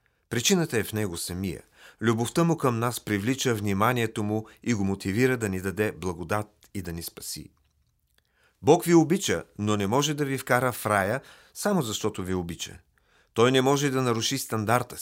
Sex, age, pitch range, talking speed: male, 40-59, 100-140 Hz, 175 wpm